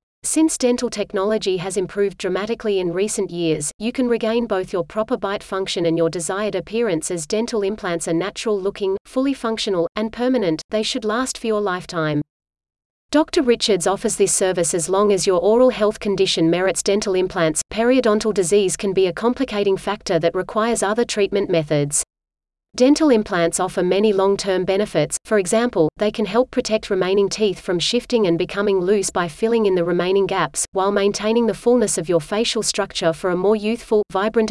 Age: 30-49